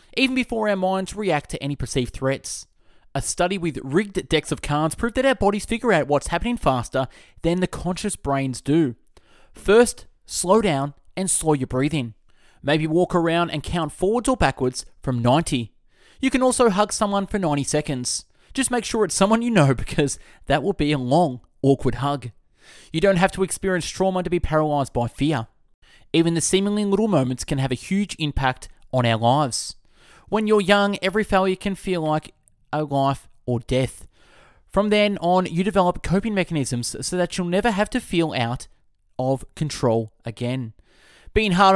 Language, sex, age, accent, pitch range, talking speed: English, male, 20-39, Australian, 135-195 Hz, 180 wpm